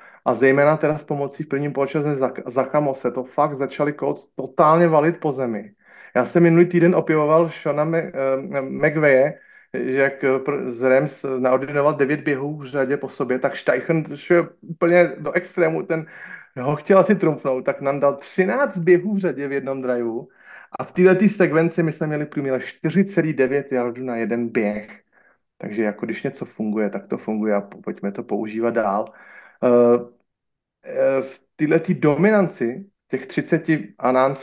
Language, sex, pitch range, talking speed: Slovak, male, 130-165 Hz, 170 wpm